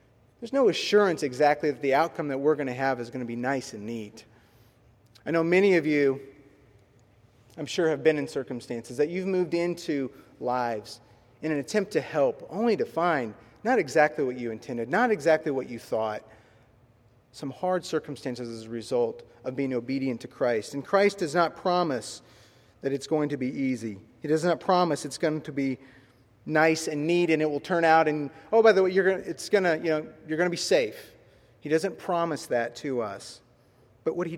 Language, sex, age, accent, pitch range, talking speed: English, male, 30-49, American, 120-160 Hz, 200 wpm